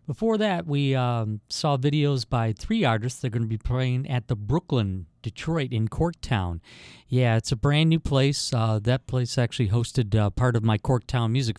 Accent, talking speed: American, 195 wpm